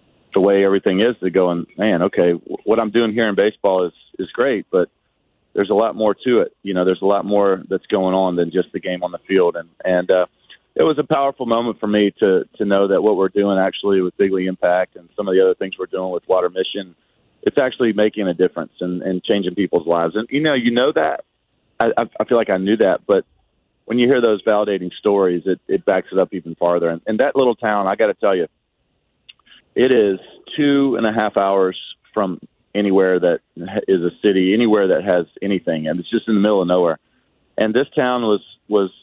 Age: 40-59